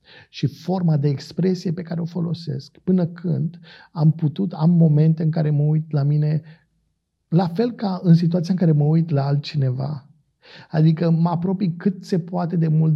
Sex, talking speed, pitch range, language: male, 180 wpm, 150-175 Hz, Romanian